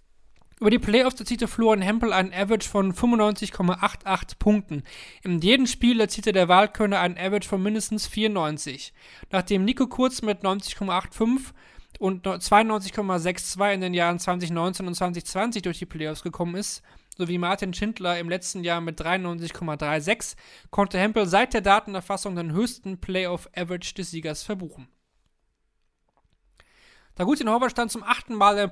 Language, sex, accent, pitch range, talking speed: German, male, German, 170-210 Hz, 140 wpm